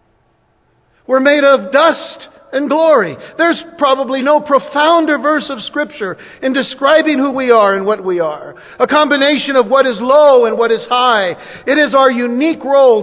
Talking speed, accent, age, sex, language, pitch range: 170 wpm, American, 50-69, male, English, 205-280 Hz